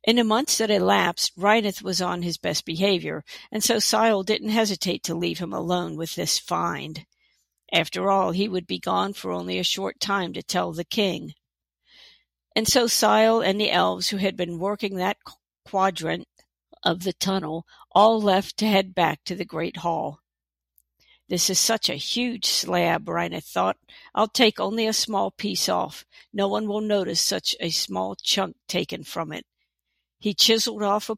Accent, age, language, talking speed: American, 50-69, English, 180 wpm